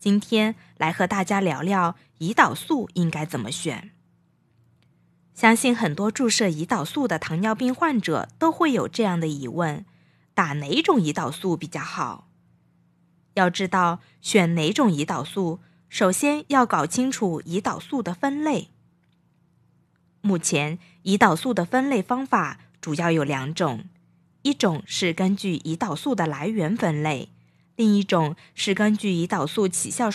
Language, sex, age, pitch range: Chinese, female, 20-39, 155-220 Hz